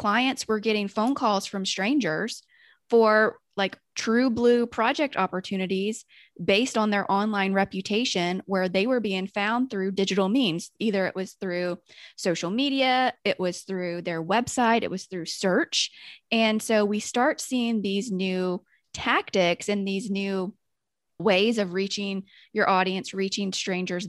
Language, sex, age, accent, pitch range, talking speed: English, female, 20-39, American, 185-230 Hz, 145 wpm